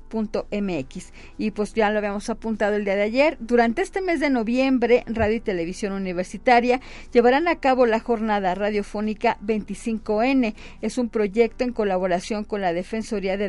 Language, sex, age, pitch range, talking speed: Spanish, female, 40-59, 205-250 Hz, 165 wpm